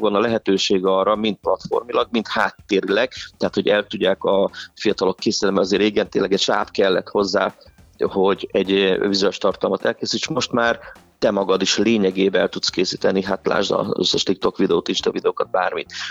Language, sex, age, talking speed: Hungarian, male, 30-49, 170 wpm